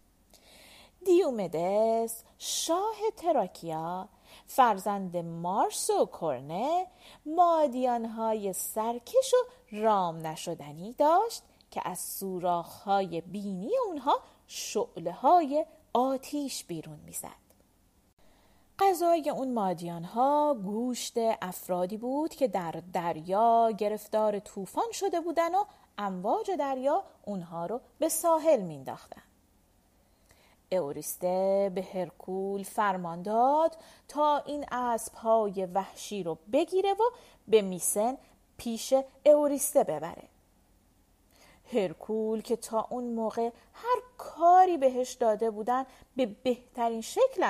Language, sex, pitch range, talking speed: Persian, female, 185-305 Hz, 95 wpm